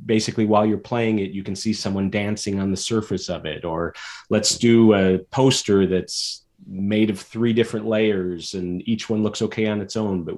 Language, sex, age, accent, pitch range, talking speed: English, male, 30-49, American, 85-105 Hz, 200 wpm